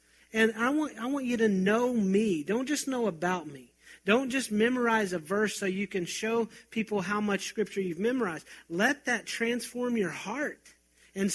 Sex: male